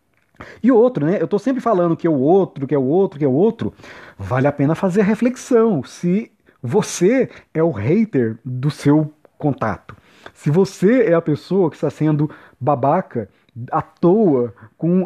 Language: Portuguese